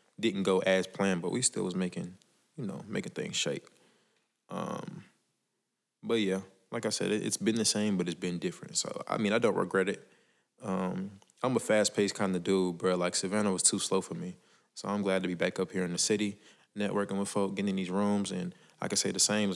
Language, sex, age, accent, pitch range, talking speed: English, male, 20-39, American, 95-110 Hz, 225 wpm